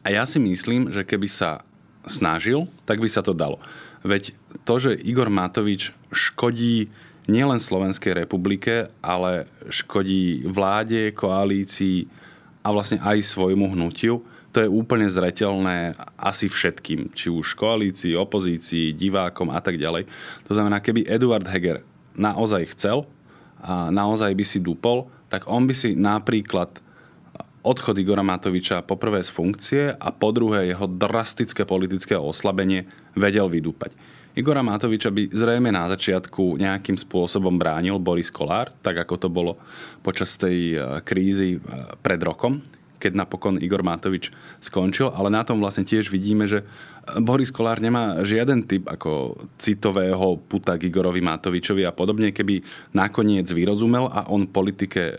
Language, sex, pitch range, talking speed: Slovak, male, 90-110 Hz, 140 wpm